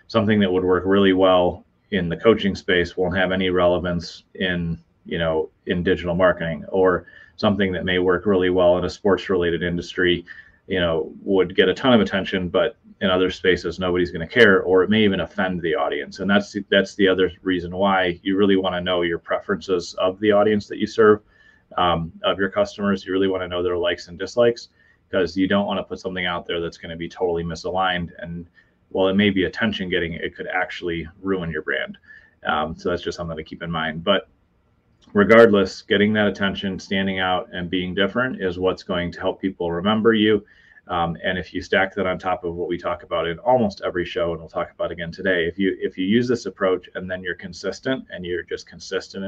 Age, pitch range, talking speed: 30-49, 90-100 Hz, 215 wpm